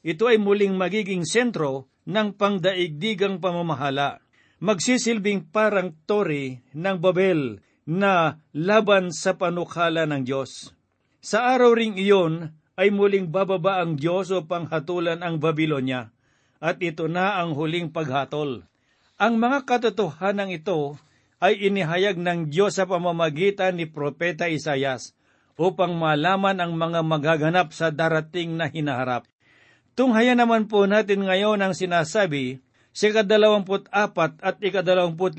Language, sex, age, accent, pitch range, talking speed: Filipino, male, 50-69, native, 155-200 Hz, 120 wpm